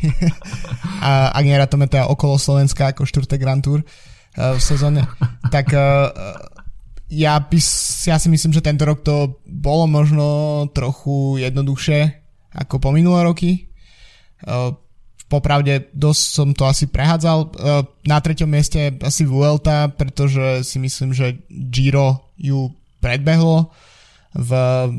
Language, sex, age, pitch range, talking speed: Slovak, male, 20-39, 130-145 Hz, 115 wpm